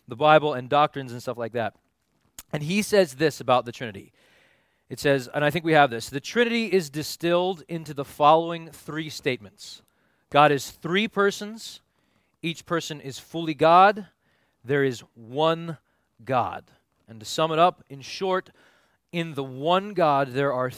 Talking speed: 170 wpm